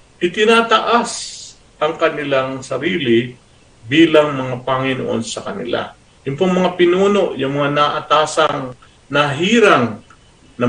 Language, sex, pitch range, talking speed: Filipino, male, 120-165 Hz, 95 wpm